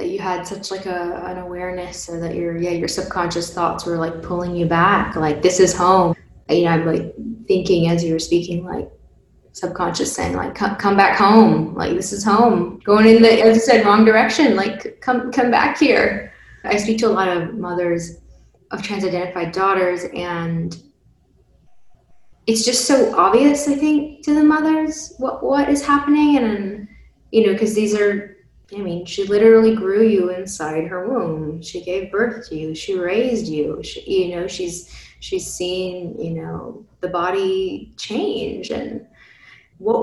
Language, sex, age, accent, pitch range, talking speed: English, female, 10-29, American, 175-230 Hz, 180 wpm